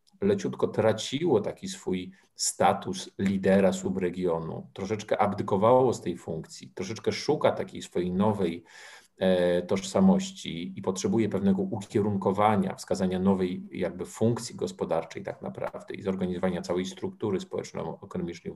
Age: 40-59